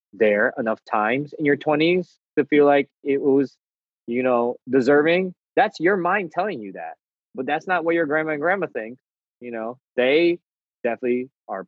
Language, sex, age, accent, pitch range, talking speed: English, male, 20-39, American, 105-130 Hz, 175 wpm